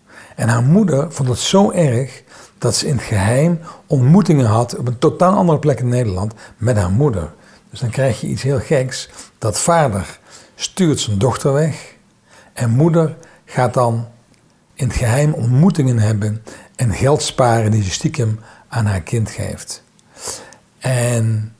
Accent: Dutch